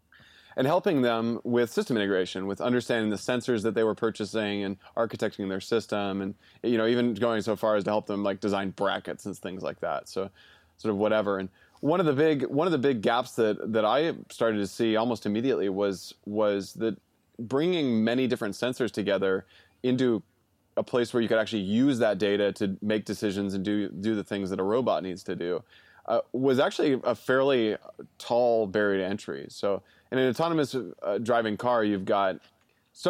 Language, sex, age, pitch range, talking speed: English, male, 20-39, 100-120 Hz, 200 wpm